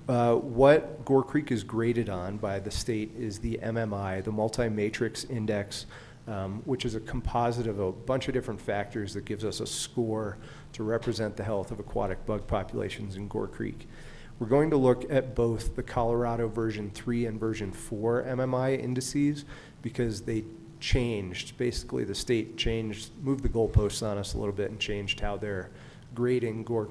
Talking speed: 180 wpm